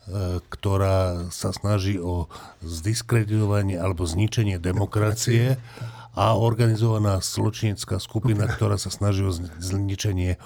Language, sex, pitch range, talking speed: Slovak, male, 105-130 Hz, 100 wpm